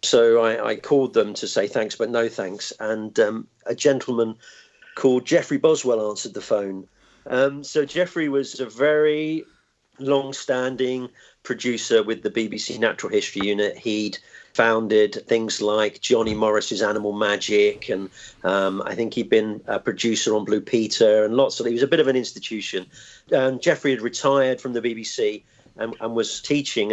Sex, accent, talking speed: male, British, 165 wpm